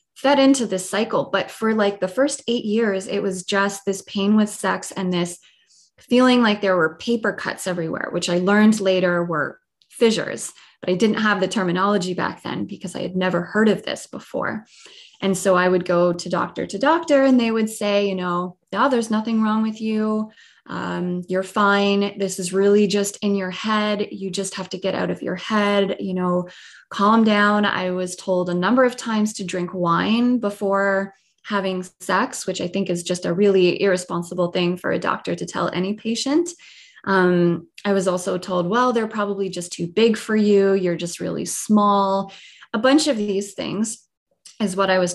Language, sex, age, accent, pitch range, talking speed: English, female, 20-39, American, 185-220 Hz, 195 wpm